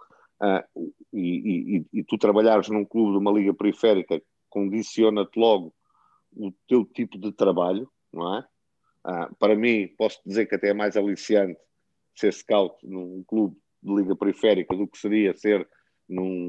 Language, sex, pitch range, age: Portuguese, male, 100-120 Hz, 50-69